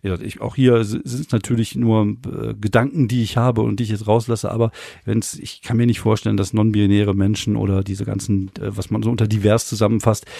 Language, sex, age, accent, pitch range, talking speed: German, male, 40-59, German, 100-115 Hz, 225 wpm